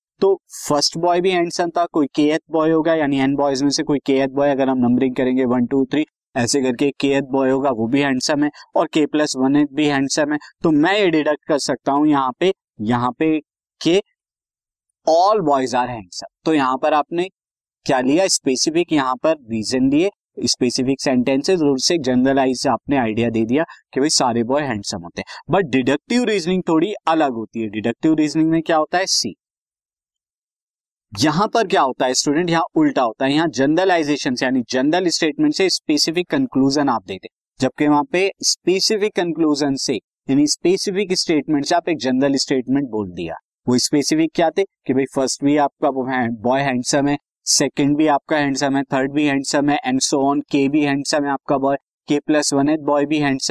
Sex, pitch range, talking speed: male, 135-165 Hz, 185 wpm